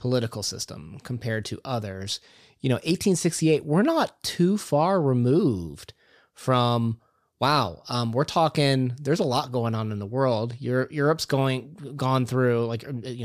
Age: 30-49